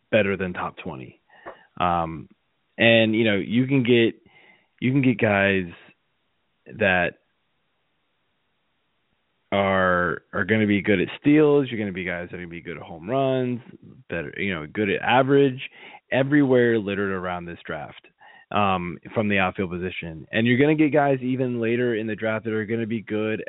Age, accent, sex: 20-39, American, male